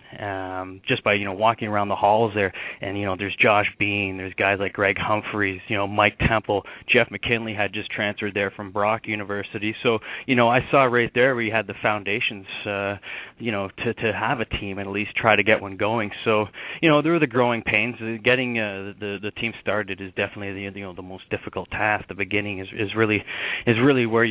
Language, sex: English, male